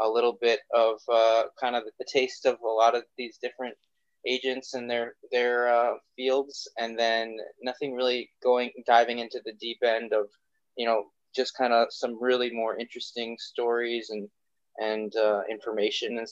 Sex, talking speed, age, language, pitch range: male, 175 wpm, 20-39, English, 115-150 Hz